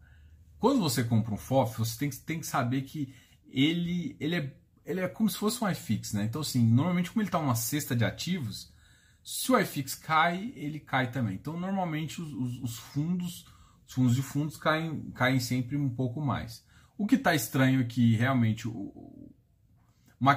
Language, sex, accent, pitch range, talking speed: Portuguese, male, Brazilian, 115-140 Hz, 190 wpm